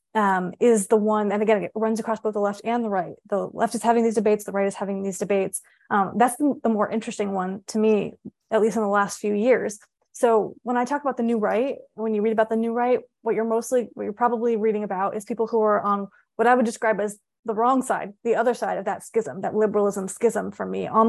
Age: 20-39